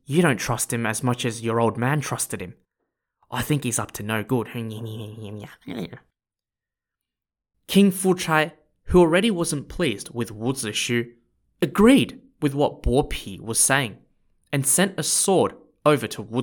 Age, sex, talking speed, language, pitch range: 20-39, male, 155 wpm, English, 115-170 Hz